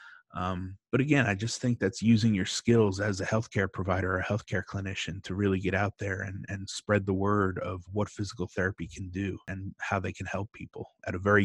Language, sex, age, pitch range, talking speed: English, male, 30-49, 90-105 Hz, 225 wpm